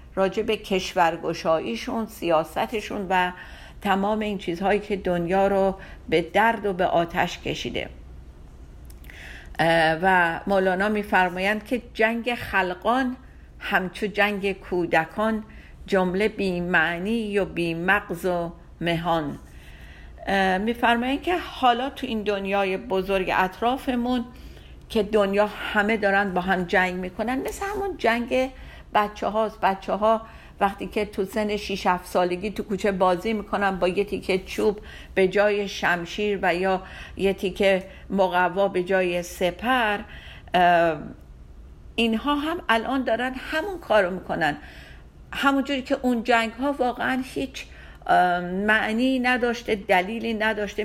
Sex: female